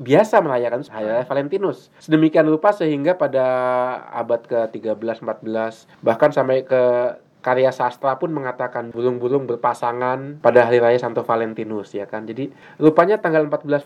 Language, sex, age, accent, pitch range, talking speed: Indonesian, male, 20-39, native, 115-140 Hz, 130 wpm